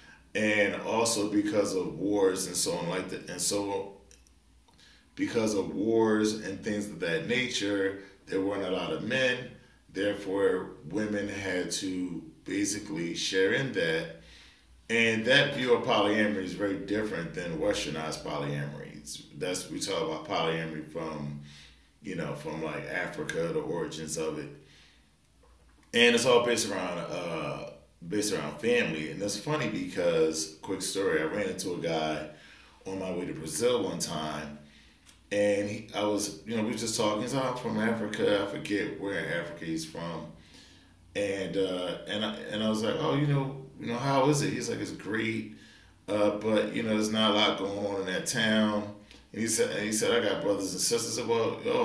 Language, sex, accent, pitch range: English, male, American, 80-110 Hz